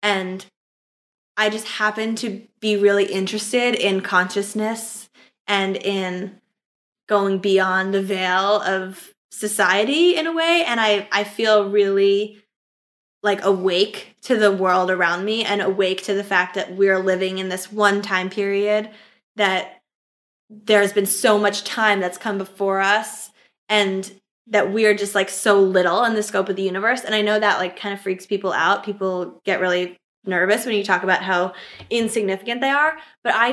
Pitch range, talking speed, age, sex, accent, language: 195-215 Hz, 165 wpm, 10-29, female, American, English